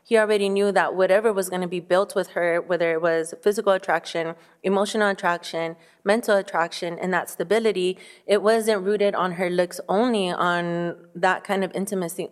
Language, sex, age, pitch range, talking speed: English, female, 20-39, 180-215 Hz, 175 wpm